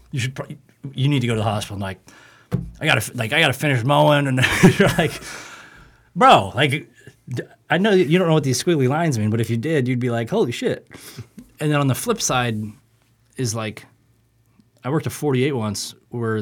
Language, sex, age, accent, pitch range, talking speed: English, male, 30-49, American, 105-125 Hz, 200 wpm